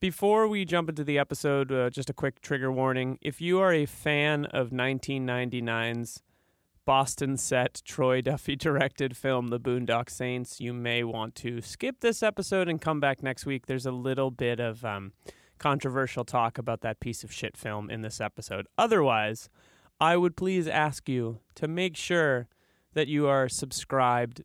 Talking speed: 165 wpm